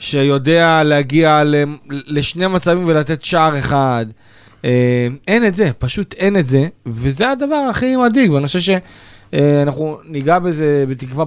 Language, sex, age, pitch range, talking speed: Hebrew, male, 30-49, 125-155 Hz, 130 wpm